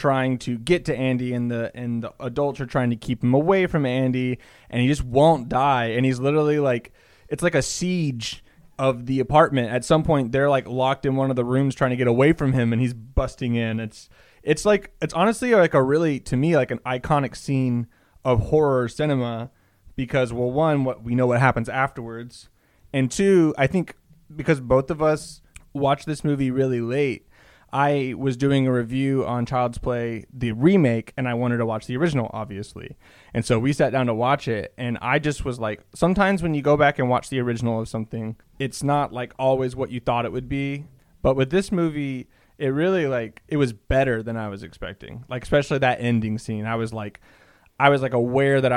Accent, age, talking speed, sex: American, 20-39, 215 wpm, male